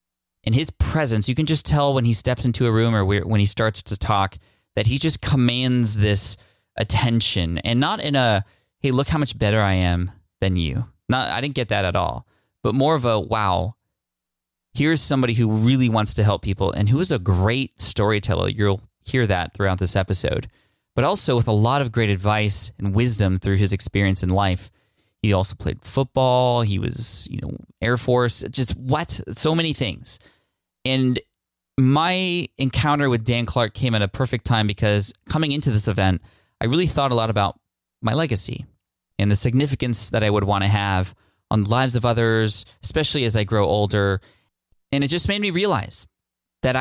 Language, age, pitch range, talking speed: English, 20-39, 95-125 Hz, 195 wpm